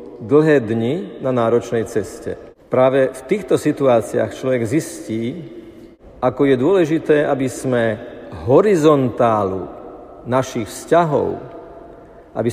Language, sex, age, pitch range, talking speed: Slovak, male, 50-69, 120-145 Hz, 95 wpm